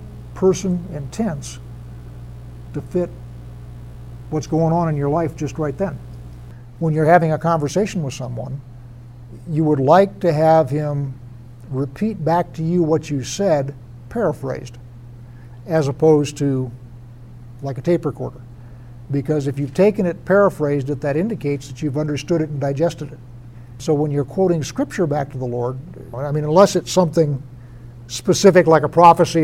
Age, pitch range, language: 60-79, 120-165 Hz, English